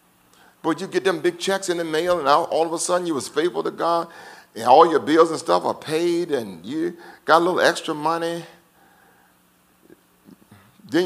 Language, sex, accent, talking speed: English, male, American, 195 wpm